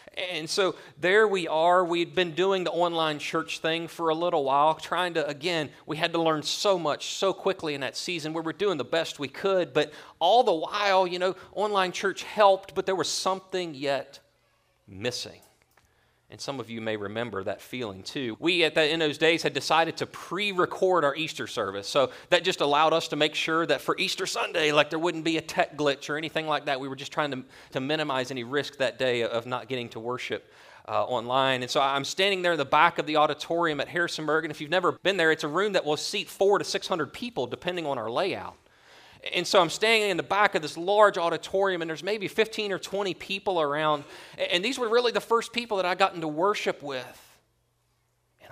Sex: male